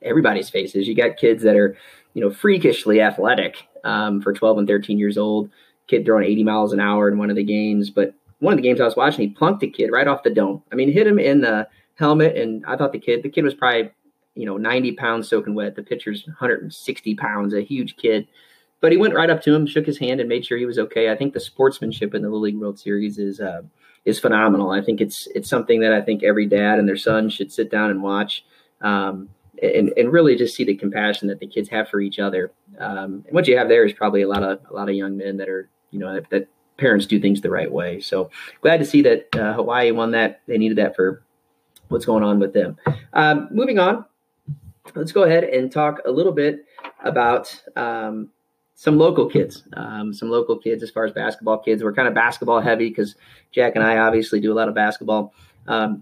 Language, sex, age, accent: English, male, 30-49, American